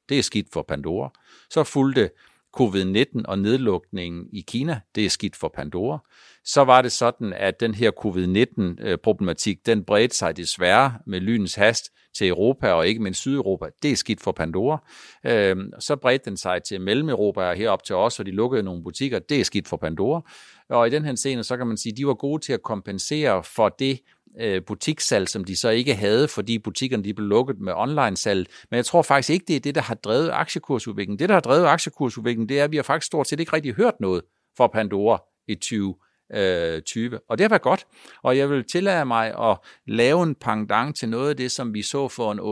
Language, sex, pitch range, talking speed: Danish, male, 105-140 Hz, 210 wpm